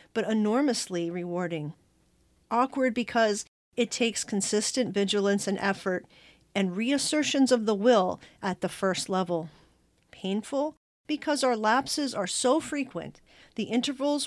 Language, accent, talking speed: English, American, 120 wpm